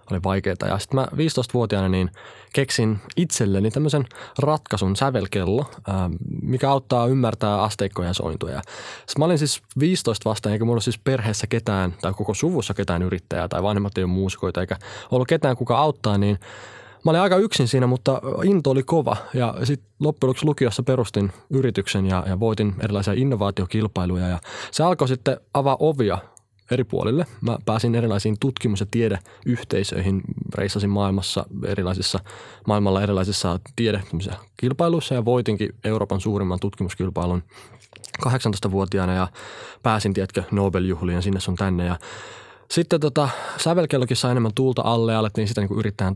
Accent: native